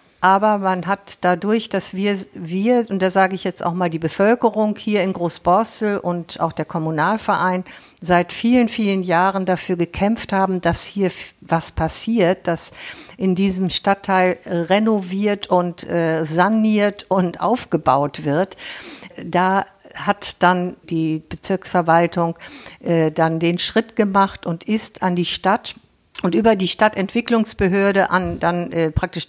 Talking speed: 140 wpm